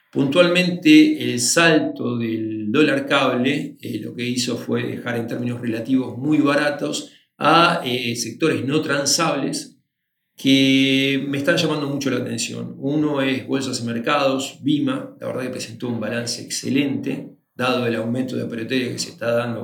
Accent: Argentinian